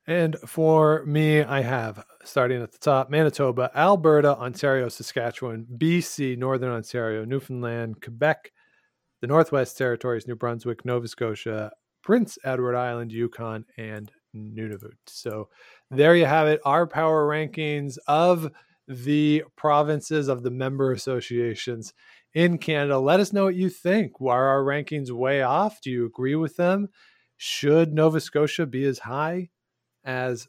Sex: male